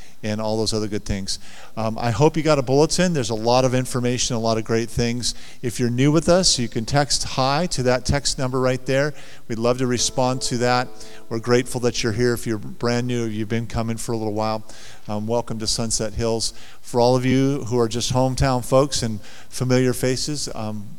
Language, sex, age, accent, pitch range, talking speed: English, male, 50-69, American, 110-125 Hz, 225 wpm